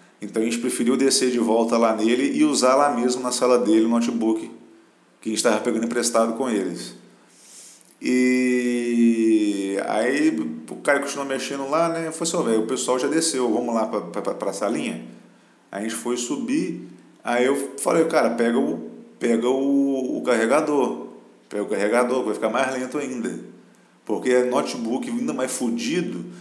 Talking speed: 170 wpm